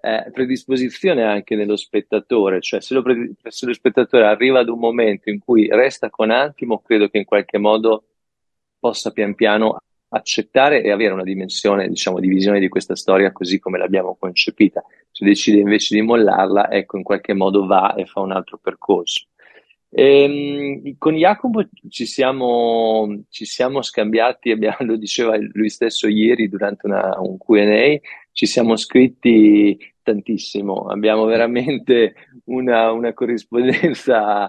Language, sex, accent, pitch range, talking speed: Italian, male, native, 105-125 Hz, 150 wpm